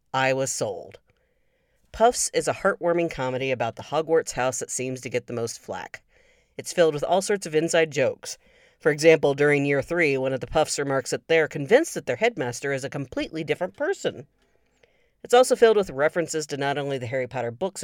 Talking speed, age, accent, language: 200 wpm, 40-59, American, English